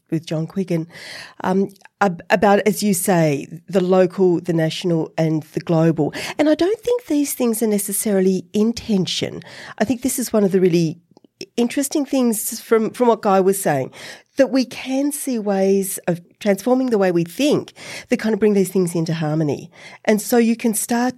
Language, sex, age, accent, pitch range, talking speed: English, female, 40-59, Australian, 165-220 Hz, 180 wpm